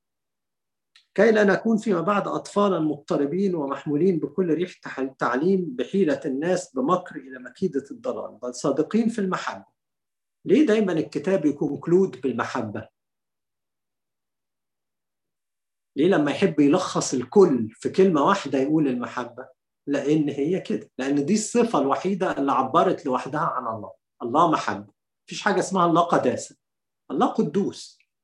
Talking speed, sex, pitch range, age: 120 wpm, male, 140-195 Hz, 50-69